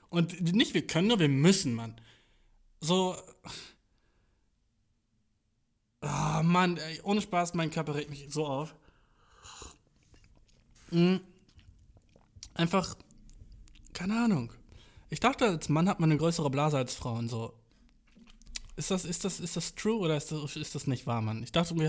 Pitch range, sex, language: 120-160 Hz, male, German